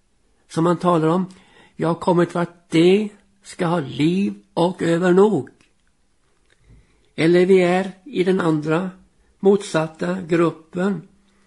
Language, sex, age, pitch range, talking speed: Swedish, male, 60-79, 155-190 Hz, 125 wpm